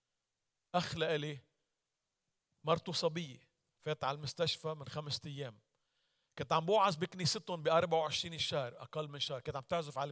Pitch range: 125-160 Hz